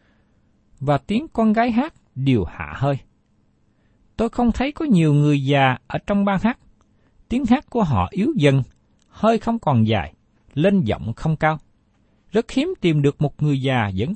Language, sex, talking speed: Vietnamese, male, 175 wpm